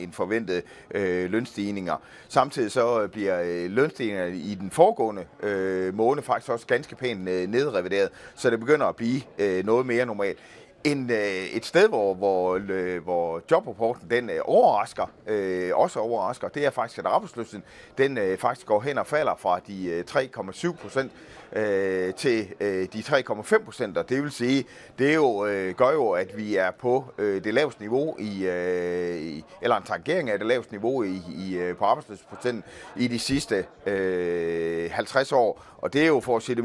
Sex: male